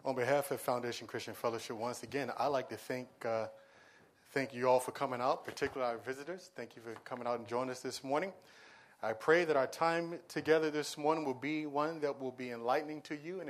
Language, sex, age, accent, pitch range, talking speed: English, male, 40-59, American, 130-165 Hz, 220 wpm